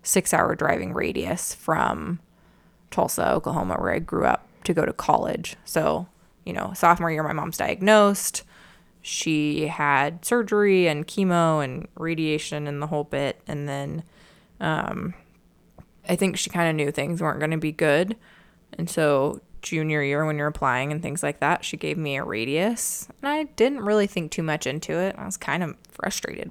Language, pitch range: English, 150-185 Hz